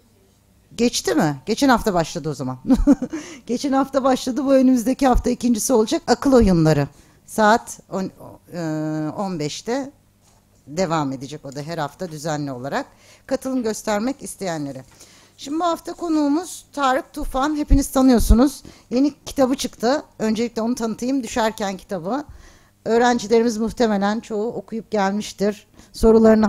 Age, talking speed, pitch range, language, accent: 60-79, 120 wpm, 170-245 Hz, Turkish, native